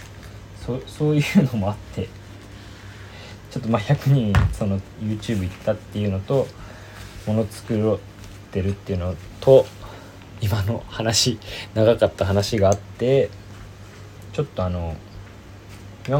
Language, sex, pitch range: Japanese, male, 100-105 Hz